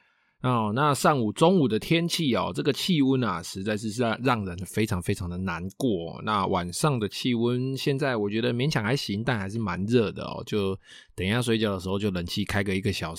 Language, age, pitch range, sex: Chinese, 20-39, 100-135 Hz, male